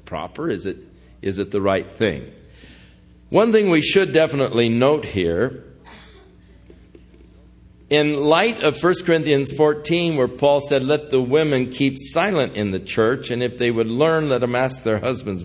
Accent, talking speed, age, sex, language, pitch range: American, 165 wpm, 60-79, male, English, 115-175 Hz